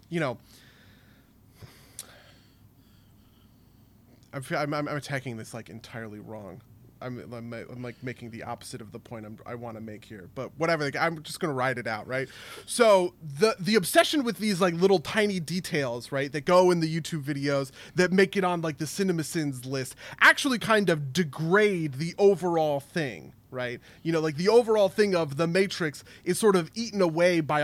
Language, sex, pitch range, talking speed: English, male, 125-170 Hz, 185 wpm